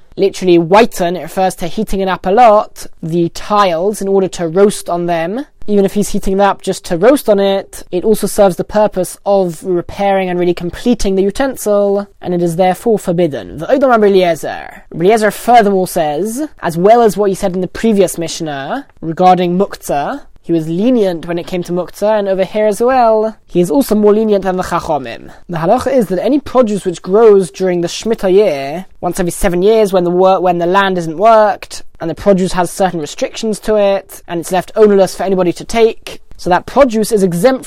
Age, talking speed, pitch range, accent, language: 20-39, 205 wpm, 180-215 Hz, British, English